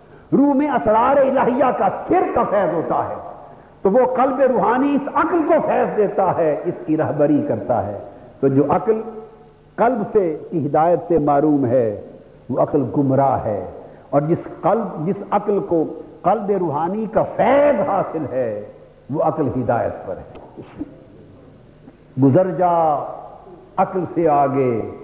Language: Urdu